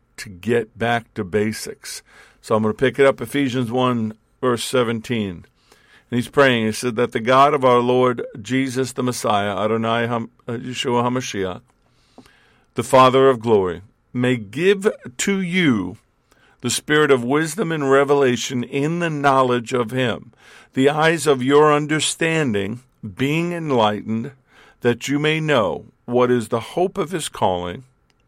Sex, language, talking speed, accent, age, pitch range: male, English, 150 wpm, American, 50-69, 115-140 Hz